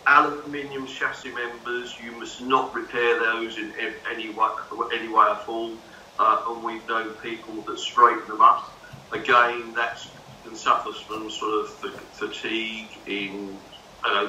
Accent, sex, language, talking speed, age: British, male, English, 145 wpm, 50-69